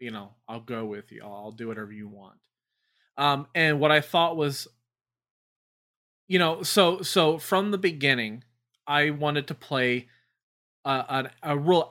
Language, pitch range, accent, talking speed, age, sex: English, 120-145 Hz, American, 160 wpm, 20-39, male